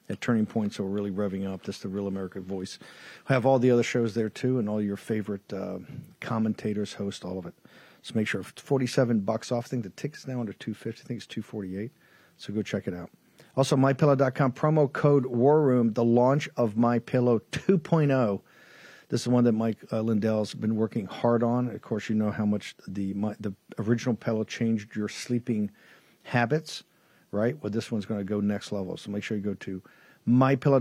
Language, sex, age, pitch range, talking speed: English, male, 50-69, 105-125 Hz, 205 wpm